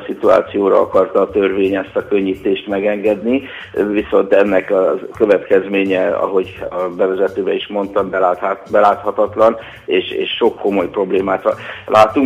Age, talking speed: 60-79, 125 wpm